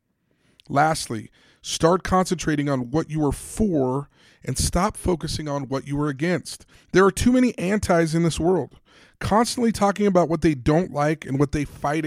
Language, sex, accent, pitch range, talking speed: English, male, American, 135-170 Hz, 175 wpm